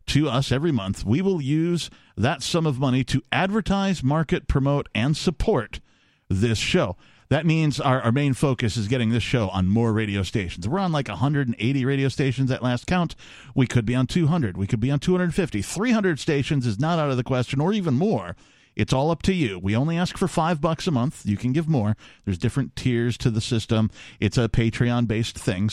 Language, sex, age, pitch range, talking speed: English, male, 50-69, 105-145 Hz, 210 wpm